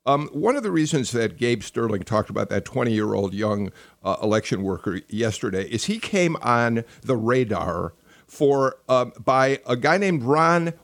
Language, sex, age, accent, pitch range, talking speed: English, male, 50-69, American, 125-165 Hz, 165 wpm